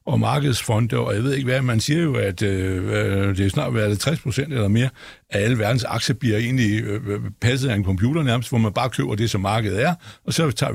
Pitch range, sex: 115-155 Hz, male